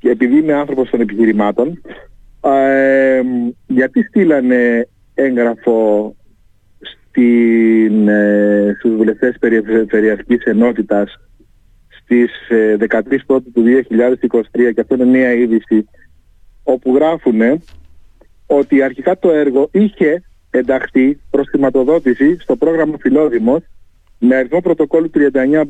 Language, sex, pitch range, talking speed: Greek, male, 120-160 Hz, 105 wpm